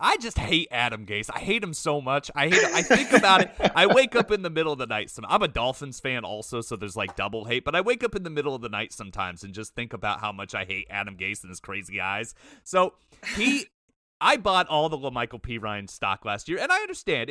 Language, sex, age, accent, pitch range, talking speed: English, male, 30-49, American, 115-180 Hz, 265 wpm